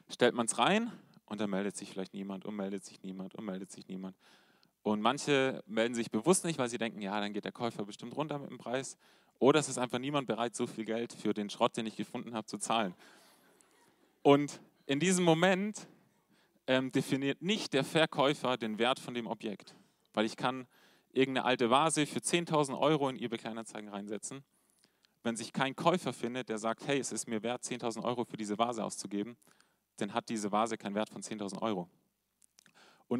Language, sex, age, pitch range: German, male, 30-49, 105-135 Hz